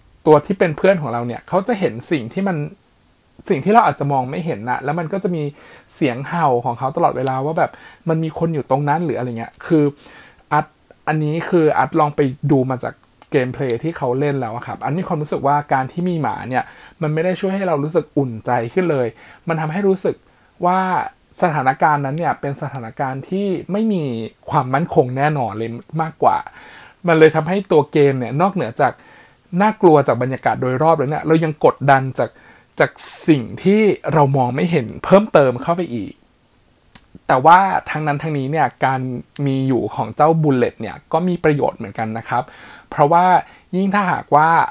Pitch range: 130-170 Hz